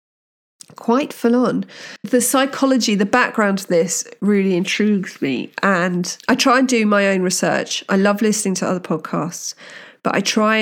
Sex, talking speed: female, 160 wpm